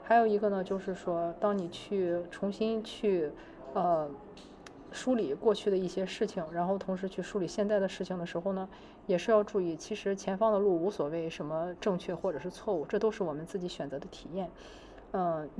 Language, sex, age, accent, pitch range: Chinese, female, 20-39, native, 180-215 Hz